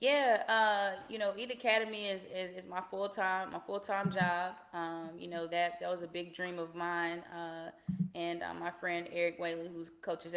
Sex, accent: female, American